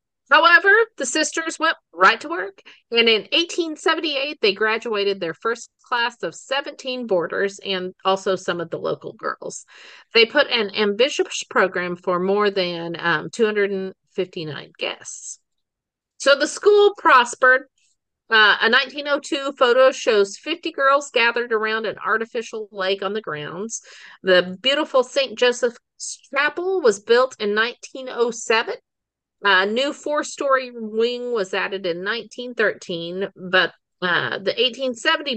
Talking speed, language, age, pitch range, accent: 130 wpm, English, 40-59, 190-275 Hz, American